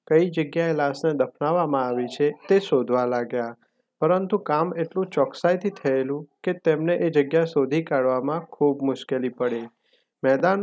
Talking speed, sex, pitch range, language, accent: 150 wpm, male, 130-160 Hz, English, Indian